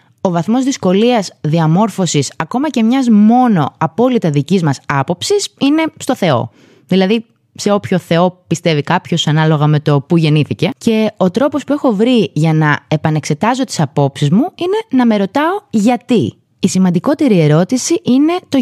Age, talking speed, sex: 20-39, 155 wpm, female